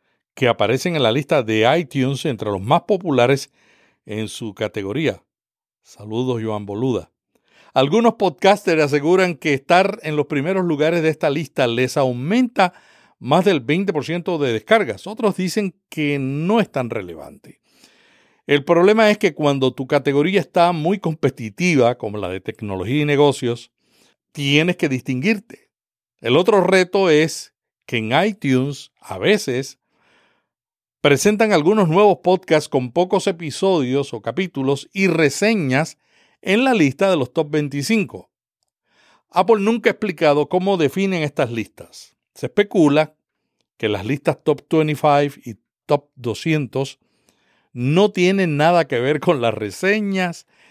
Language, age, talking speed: Spanish, 60-79, 135 wpm